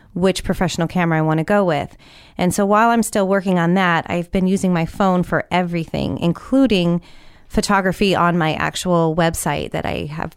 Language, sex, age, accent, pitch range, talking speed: English, female, 30-49, American, 175-210 Hz, 180 wpm